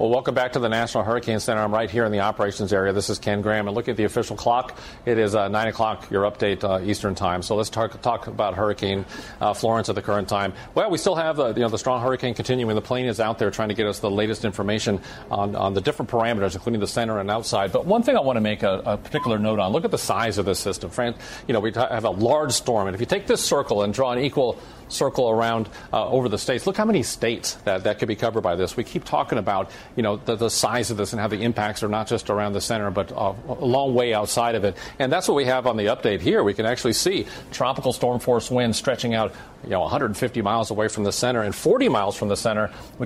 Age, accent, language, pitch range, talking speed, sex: 40-59, American, English, 105-120 Hz, 270 wpm, male